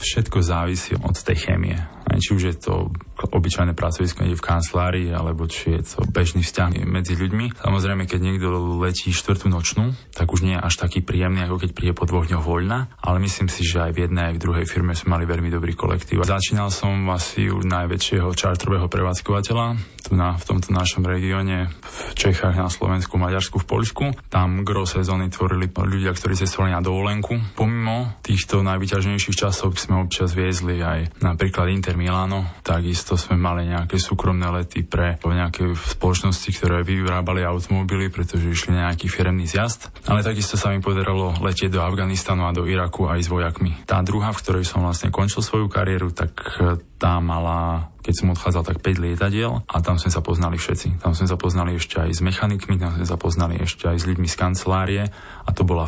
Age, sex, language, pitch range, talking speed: 20-39, male, Slovak, 90-95 Hz, 185 wpm